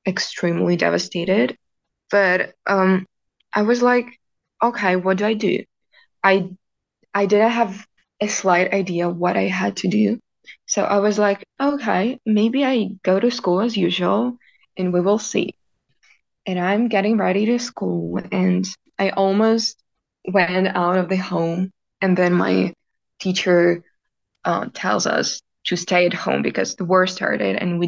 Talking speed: 155 wpm